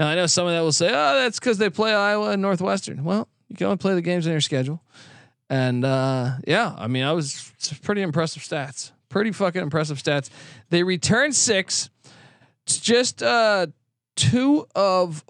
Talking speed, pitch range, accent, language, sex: 185 wpm, 130-165 Hz, American, English, male